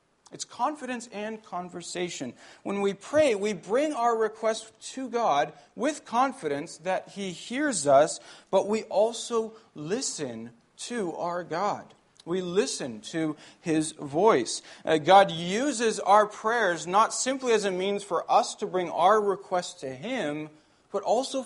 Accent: American